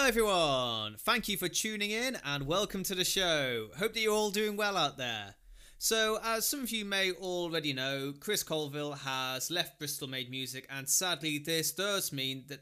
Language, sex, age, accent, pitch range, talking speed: English, male, 30-49, British, 135-190 Hz, 195 wpm